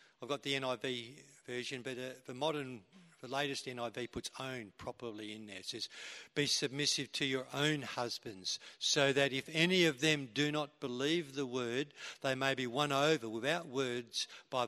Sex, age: male, 50-69